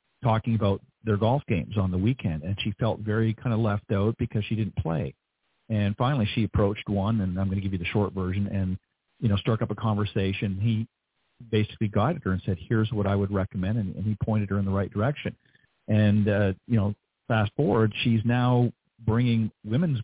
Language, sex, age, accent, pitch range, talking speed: English, male, 50-69, American, 105-125 Hz, 215 wpm